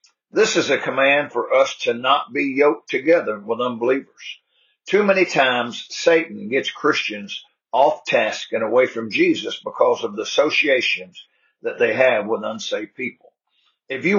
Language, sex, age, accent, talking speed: English, male, 50-69, American, 155 wpm